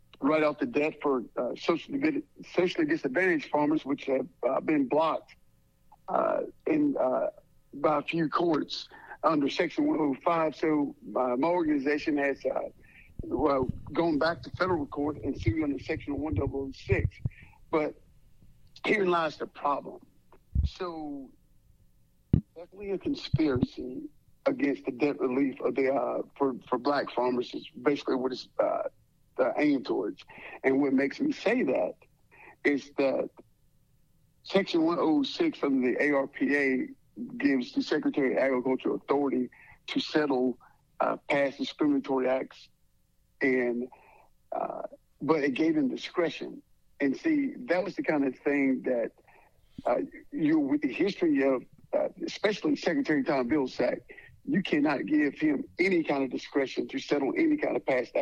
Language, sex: English, male